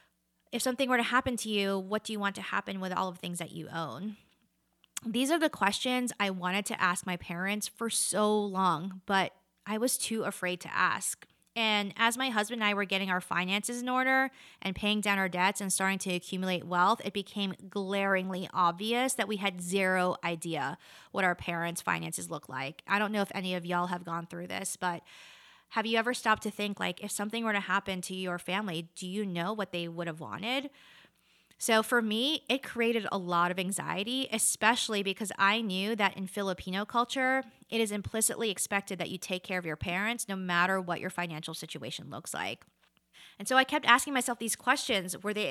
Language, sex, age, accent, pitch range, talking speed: English, female, 20-39, American, 180-230 Hz, 210 wpm